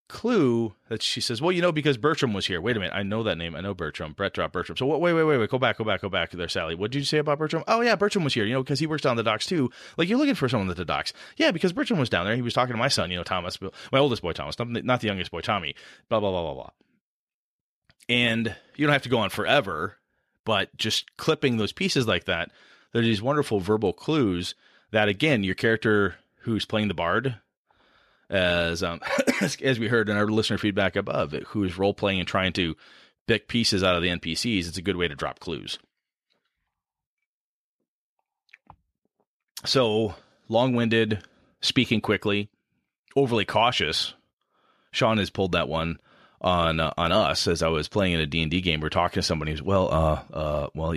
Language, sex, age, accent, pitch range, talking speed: English, male, 30-49, American, 90-120 Hz, 220 wpm